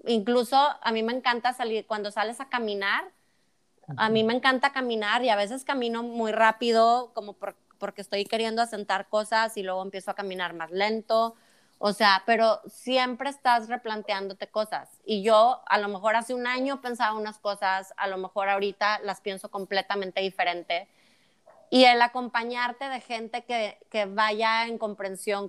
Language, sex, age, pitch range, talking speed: Spanish, female, 20-39, 200-235 Hz, 165 wpm